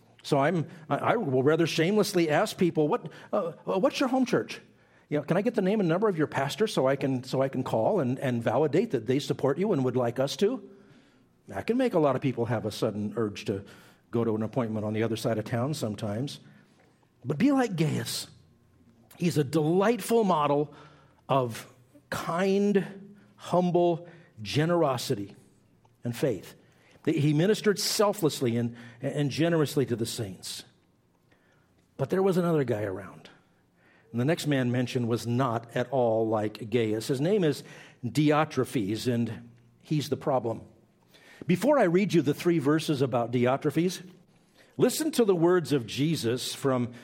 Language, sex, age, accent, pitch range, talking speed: English, male, 50-69, American, 120-165 Hz, 170 wpm